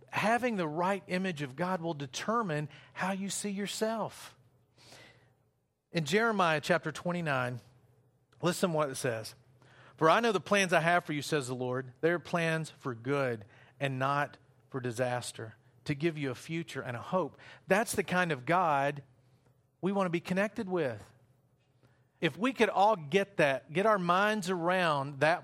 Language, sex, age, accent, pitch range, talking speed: English, male, 40-59, American, 130-180 Hz, 165 wpm